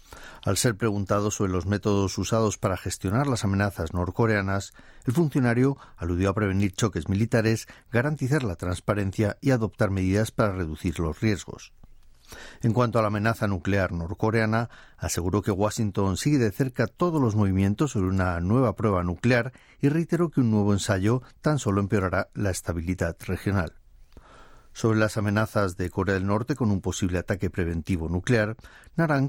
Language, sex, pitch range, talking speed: Spanish, male, 95-120 Hz, 155 wpm